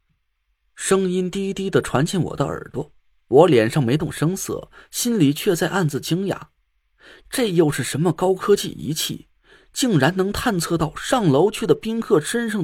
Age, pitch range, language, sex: 30-49, 140-195 Hz, Chinese, male